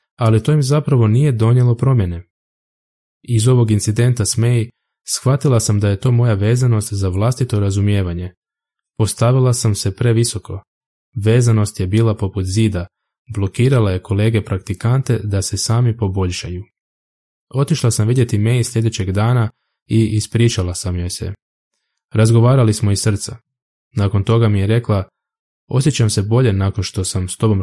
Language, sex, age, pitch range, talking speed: Croatian, male, 20-39, 100-120 Hz, 145 wpm